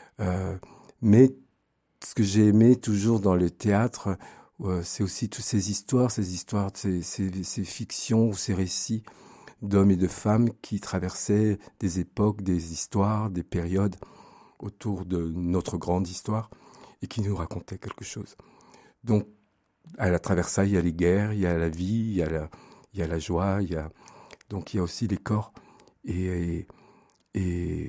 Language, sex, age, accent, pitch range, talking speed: French, male, 50-69, French, 90-105 Hz, 180 wpm